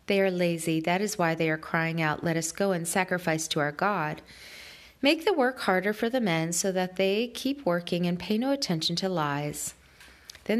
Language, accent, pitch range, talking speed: English, American, 165-230 Hz, 210 wpm